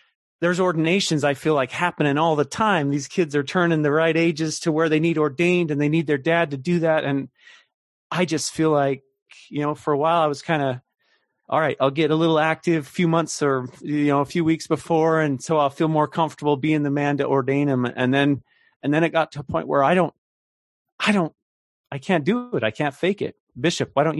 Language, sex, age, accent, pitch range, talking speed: English, male, 30-49, American, 130-160 Hz, 240 wpm